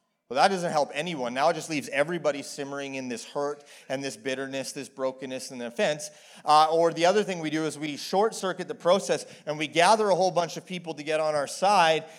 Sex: male